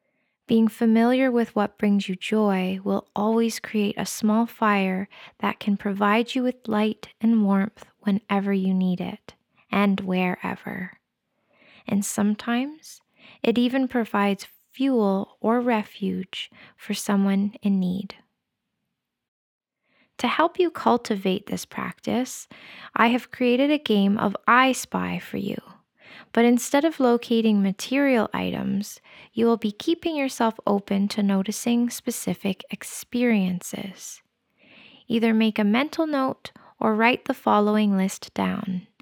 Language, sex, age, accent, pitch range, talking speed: English, female, 10-29, American, 200-240 Hz, 125 wpm